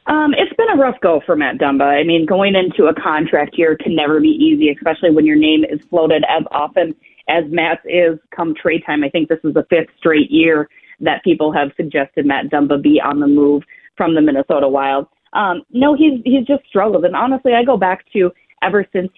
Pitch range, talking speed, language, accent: 155-185 Hz, 220 wpm, English, American